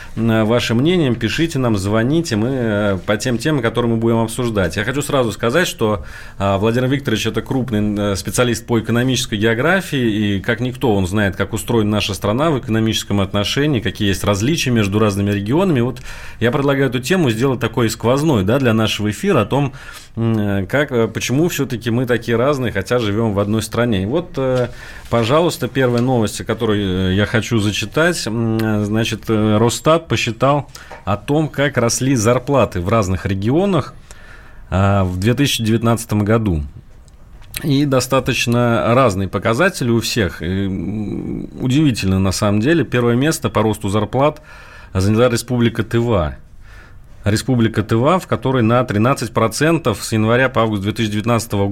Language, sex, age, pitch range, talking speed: Russian, male, 30-49, 105-125 Hz, 135 wpm